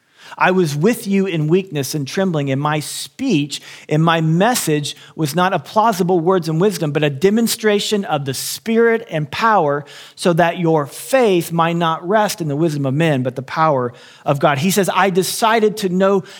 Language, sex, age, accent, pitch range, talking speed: English, male, 40-59, American, 150-195 Hz, 190 wpm